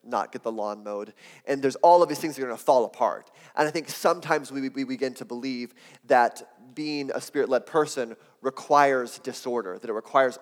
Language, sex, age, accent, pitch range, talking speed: English, male, 30-49, American, 120-140 Hz, 205 wpm